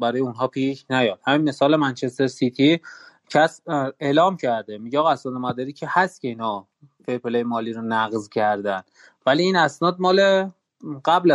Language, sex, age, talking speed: Persian, male, 30-49, 150 wpm